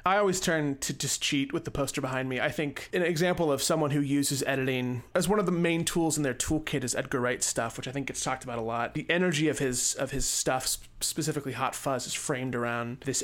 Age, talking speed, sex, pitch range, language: 30-49, 245 wpm, male, 125-150 Hz, English